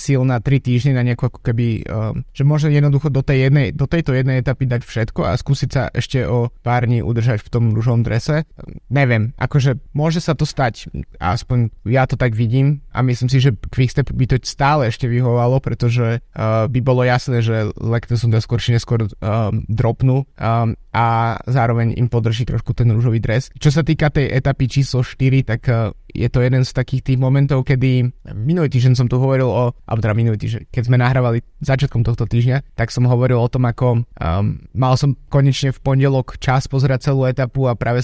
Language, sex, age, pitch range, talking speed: Slovak, male, 20-39, 120-135 Hz, 195 wpm